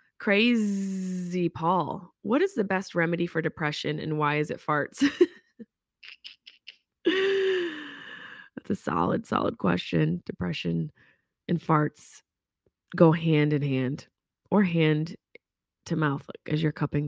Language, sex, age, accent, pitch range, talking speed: English, female, 20-39, American, 150-215 Hz, 115 wpm